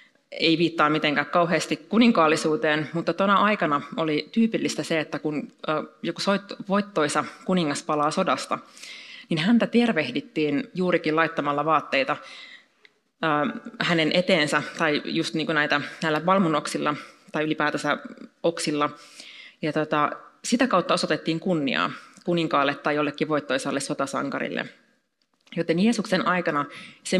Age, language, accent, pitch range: 30-49, Finnish, native, 155-195 Hz